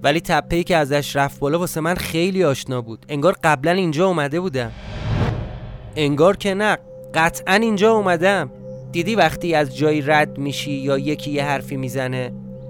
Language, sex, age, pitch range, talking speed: Persian, male, 30-49, 125-165 Hz, 155 wpm